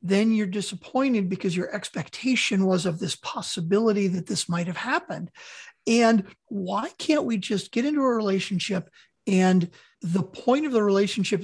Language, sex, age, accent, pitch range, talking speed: English, male, 50-69, American, 190-240 Hz, 150 wpm